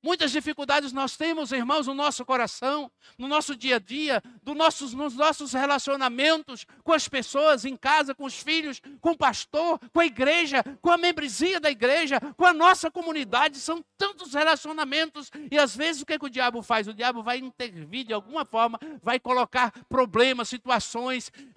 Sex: male